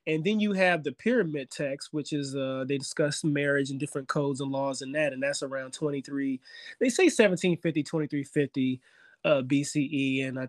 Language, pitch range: English, 135-175 Hz